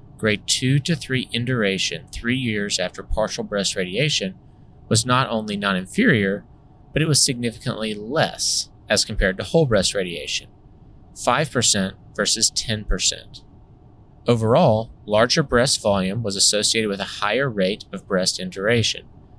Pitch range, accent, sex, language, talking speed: 100-125 Hz, American, male, English, 135 wpm